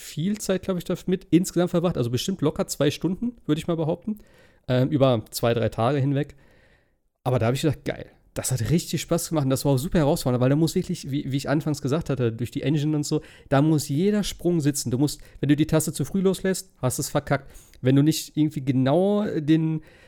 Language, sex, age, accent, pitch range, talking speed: German, male, 40-59, German, 130-170 Hz, 235 wpm